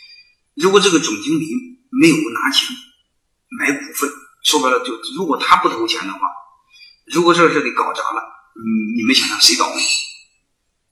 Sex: male